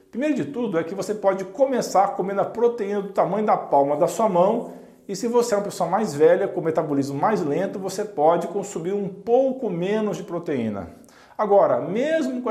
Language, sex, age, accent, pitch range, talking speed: Portuguese, male, 50-69, Brazilian, 180-225 Hz, 195 wpm